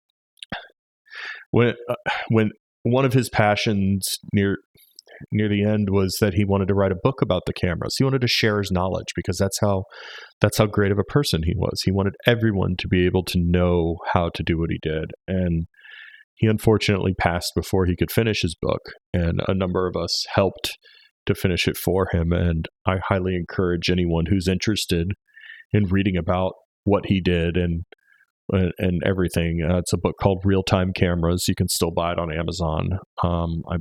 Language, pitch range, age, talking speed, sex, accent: English, 90-110 Hz, 30-49, 190 wpm, male, American